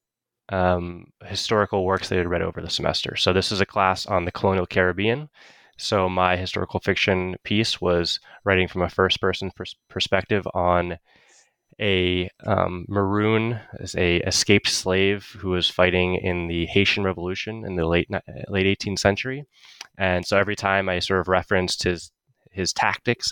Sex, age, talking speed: male, 20-39, 160 wpm